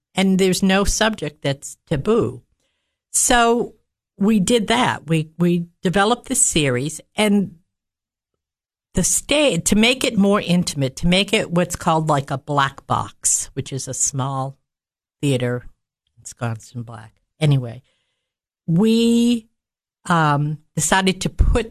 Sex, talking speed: female, 125 wpm